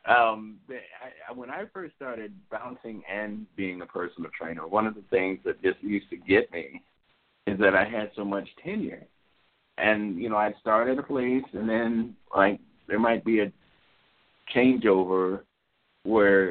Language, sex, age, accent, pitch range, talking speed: English, male, 50-69, American, 100-130 Hz, 165 wpm